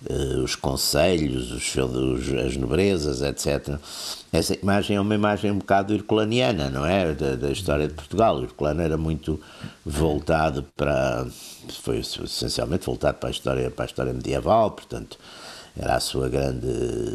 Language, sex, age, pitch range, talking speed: Portuguese, male, 60-79, 70-100 Hz, 145 wpm